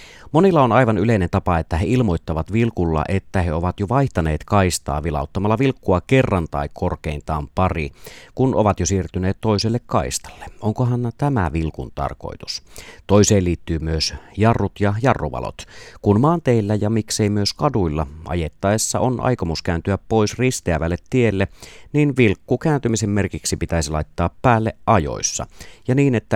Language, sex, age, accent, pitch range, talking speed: Finnish, male, 30-49, native, 80-115 Hz, 140 wpm